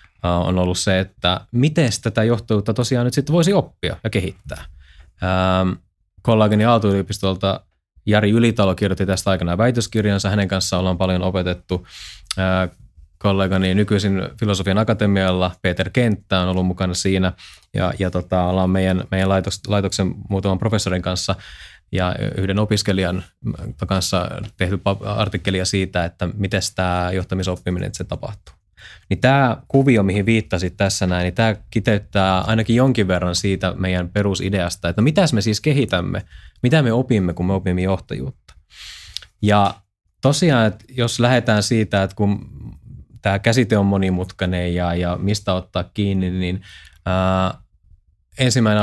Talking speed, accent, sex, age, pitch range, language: 135 wpm, native, male, 20-39, 90-105 Hz, Finnish